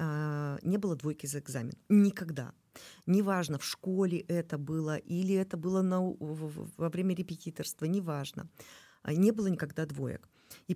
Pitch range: 155-200 Hz